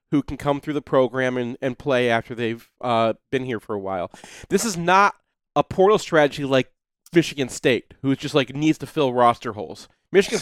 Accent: American